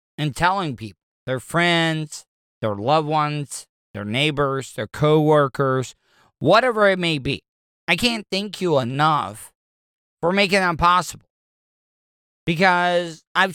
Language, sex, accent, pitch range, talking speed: English, male, American, 140-190 Hz, 120 wpm